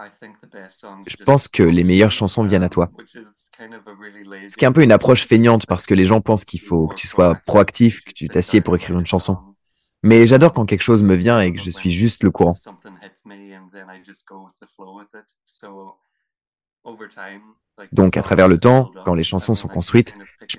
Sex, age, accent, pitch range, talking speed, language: male, 20-39, French, 95-110 Hz, 175 wpm, French